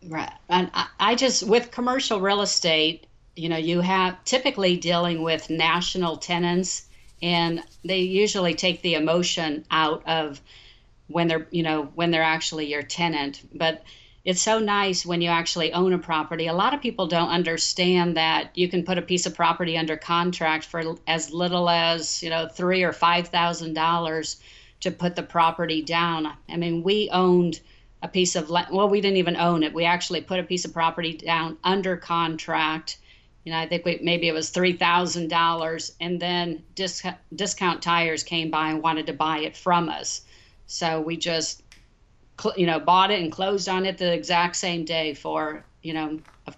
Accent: American